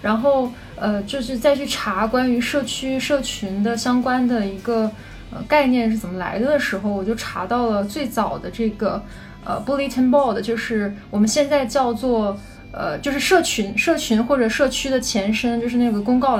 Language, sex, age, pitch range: Chinese, female, 20-39, 220-270 Hz